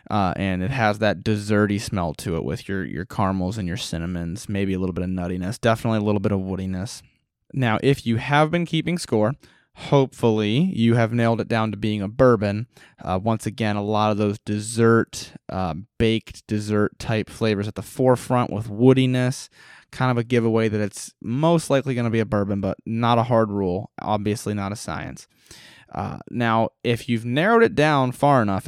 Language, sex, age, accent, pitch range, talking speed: English, male, 20-39, American, 100-125 Hz, 195 wpm